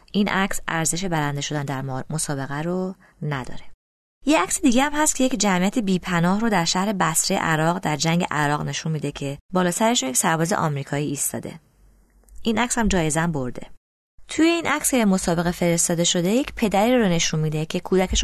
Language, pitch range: Persian, 165-210 Hz